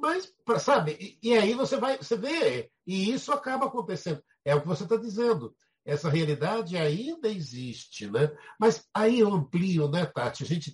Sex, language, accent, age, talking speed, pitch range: male, Portuguese, Brazilian, 60-79, 180 wpm, 150-220 Hz